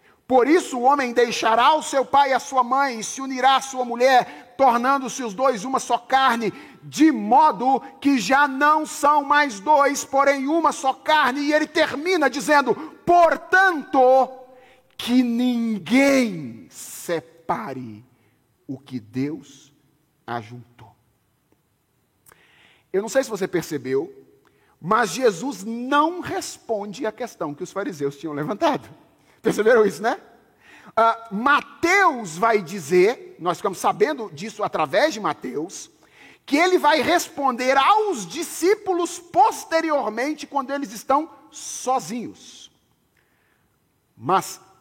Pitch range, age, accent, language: 185-295 Hz, 40-59, Brazilian, Portuguese